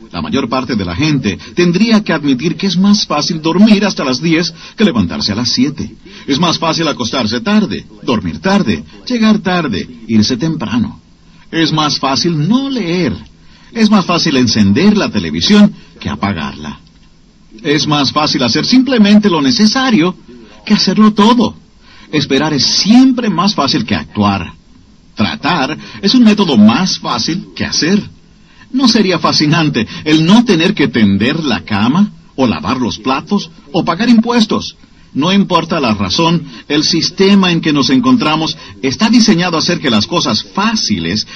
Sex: male